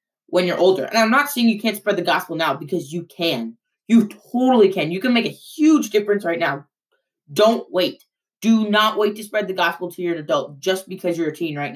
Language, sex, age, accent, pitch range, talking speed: English, female, 20-39, American, 170-205 Hz, 230 wpm